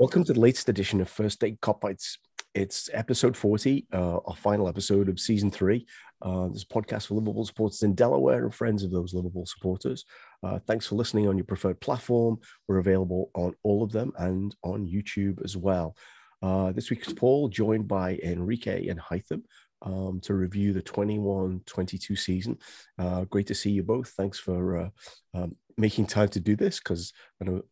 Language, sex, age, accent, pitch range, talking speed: English, male, 30-49, British, 95-105 Hz, 185 wpm